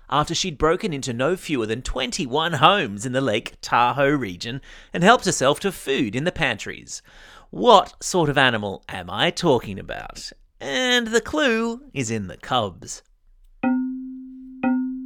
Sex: male